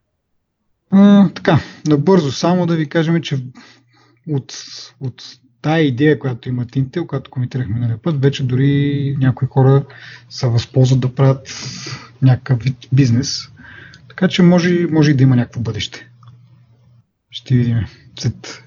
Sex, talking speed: male, 135 wpm